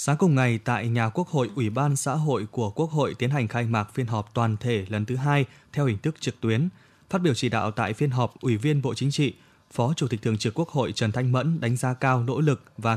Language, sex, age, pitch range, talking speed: Vietnamese, male, 20-39, 115-145 Hz, 270 wpm